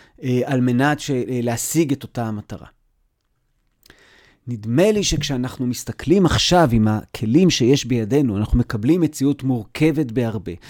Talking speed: 110 wpm